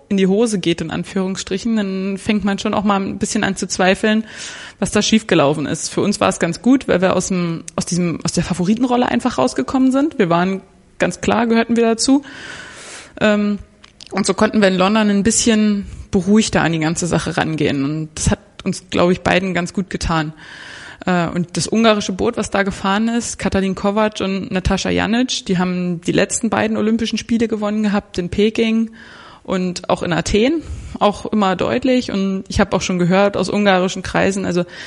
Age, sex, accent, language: 20-39, female, German, German